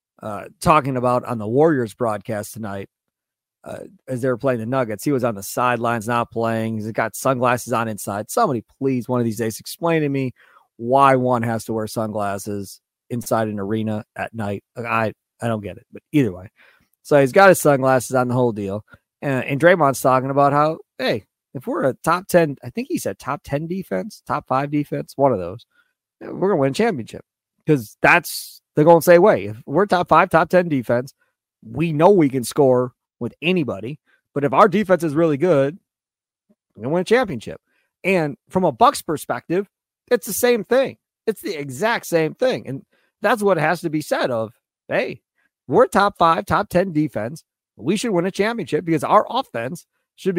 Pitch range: 120-175 Hz